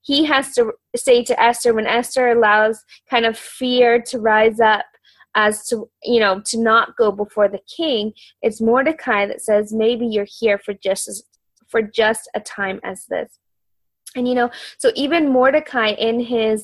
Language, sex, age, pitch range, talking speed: English, female, 20-39, 215-250 Hz, 175 wpm